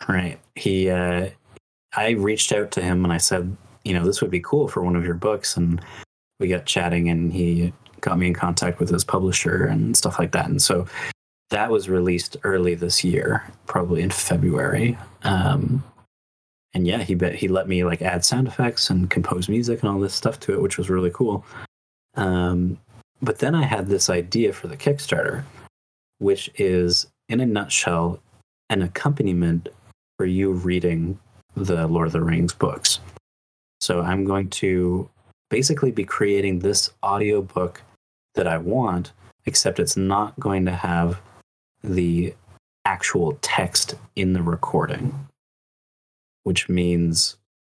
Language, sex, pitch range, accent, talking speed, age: English, male, 85-100 Hz, American, 160 wpm, 20-39